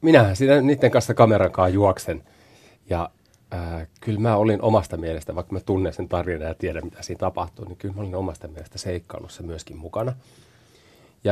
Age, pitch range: 30-49, 90-110 Hz